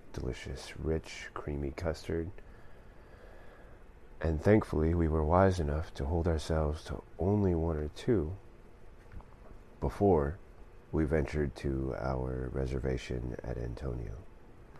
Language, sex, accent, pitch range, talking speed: English, male, American, 70-90 Hz, 105 wpm